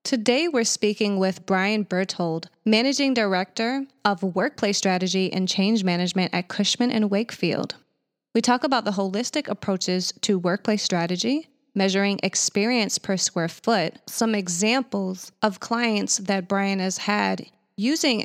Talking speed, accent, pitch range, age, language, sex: 135 wpm, American, 190-225 Hz, 20-39, English, female